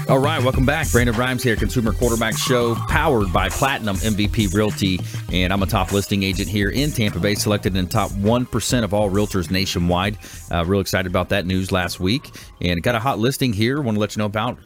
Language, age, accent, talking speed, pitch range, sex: English, 30-49, American, 220 wpm, 95-120 Hz, male